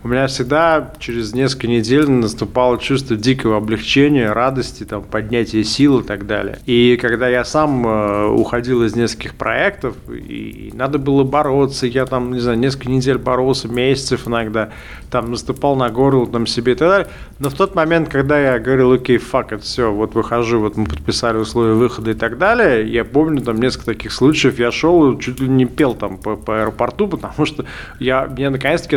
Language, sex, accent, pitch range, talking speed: Russian, male, native, 115-140 Hz, 180 wpm